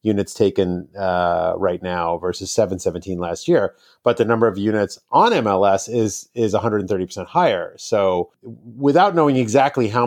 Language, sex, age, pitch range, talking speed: English, male, 30-49, 90-110 Hz, 150 wpm